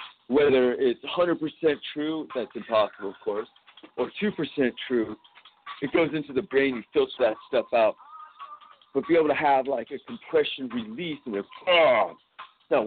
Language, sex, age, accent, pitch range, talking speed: English, male, 50-69, American, 115-165 Hz, 170 wpm